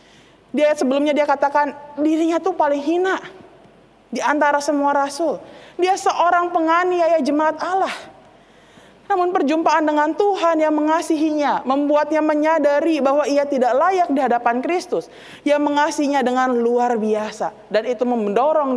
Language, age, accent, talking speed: Indonesian, 30-49, native, 130 wpm